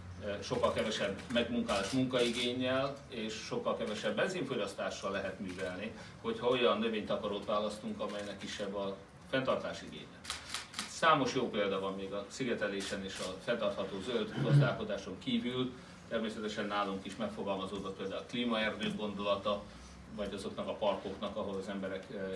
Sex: male